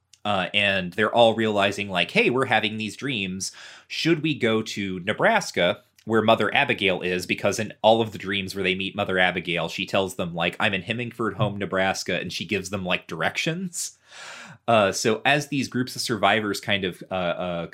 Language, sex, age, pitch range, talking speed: English, male, 30-49, 95-120 Hz, 195 wpm